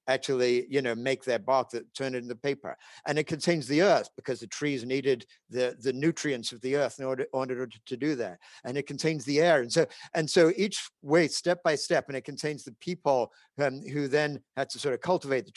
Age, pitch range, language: 50-69, 130-160 Hz, English